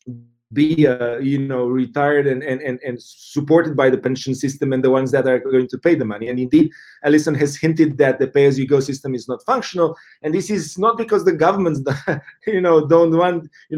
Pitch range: 135-170 Hz